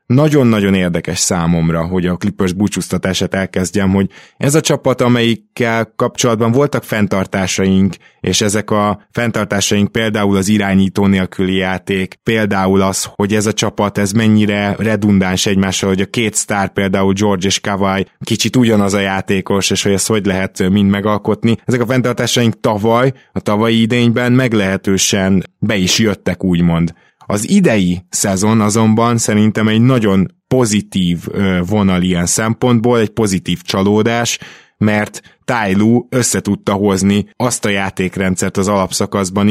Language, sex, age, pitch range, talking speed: Hungarian, male, 20-39, 95-110 Hz, 135 wpm